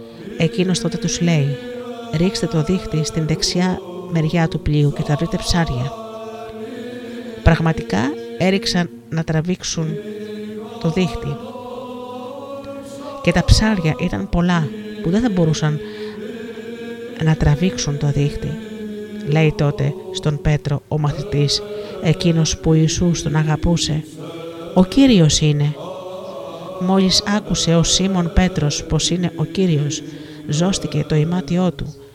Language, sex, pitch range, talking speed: Greek, female, 155-205 Hz, 115 wpm